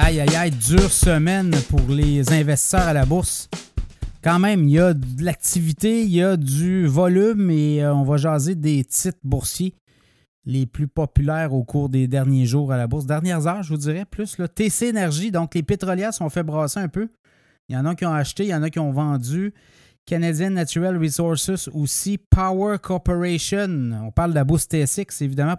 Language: French